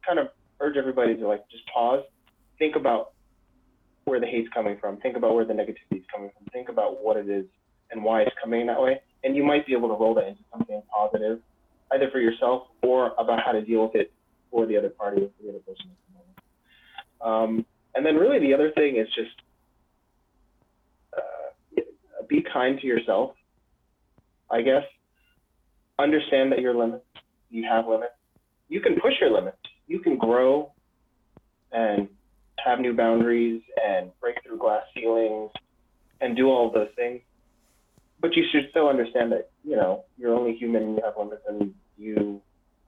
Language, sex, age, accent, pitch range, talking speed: English, male, 20-39, American, 110-135 Hz, 180 wpm